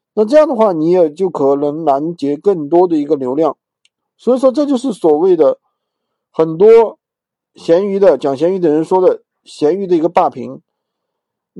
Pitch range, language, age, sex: 170-245 Hz, Chinese, 50-69, male